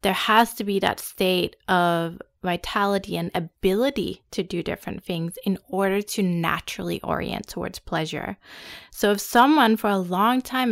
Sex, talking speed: female, 155 wpm